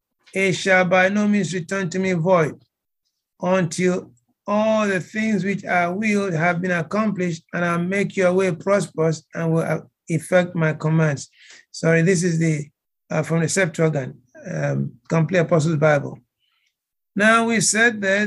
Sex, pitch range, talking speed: male, 170-200 Hz, 150 wpm